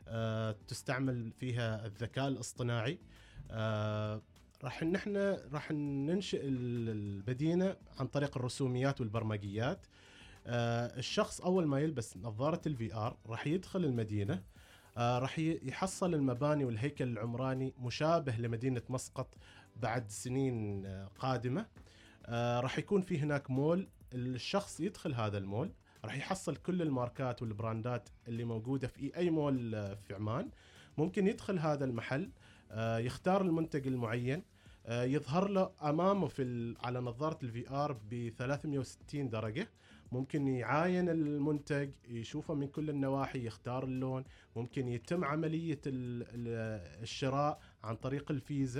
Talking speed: 120 wpm